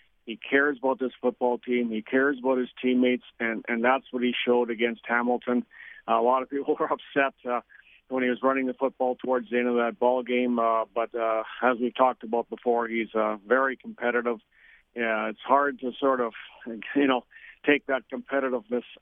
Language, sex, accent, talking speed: English, male, American, 195 wpm